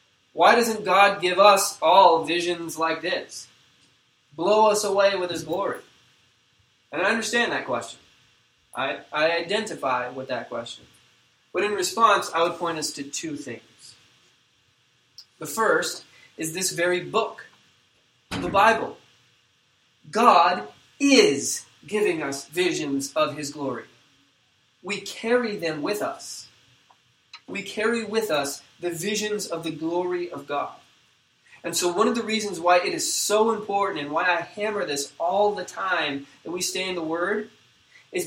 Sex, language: male, English